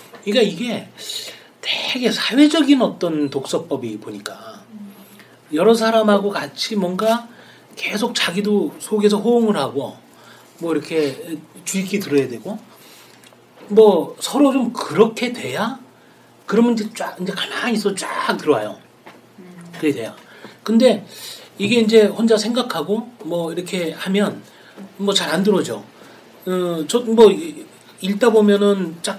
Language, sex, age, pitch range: Korean, male, 40-59, 160-220 Hz